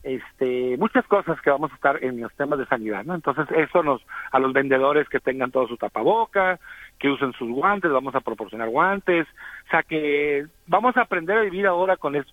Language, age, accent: Spanish, 50-69, Mexican